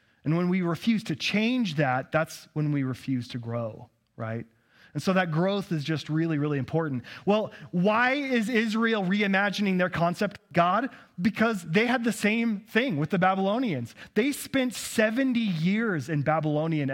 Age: 30-49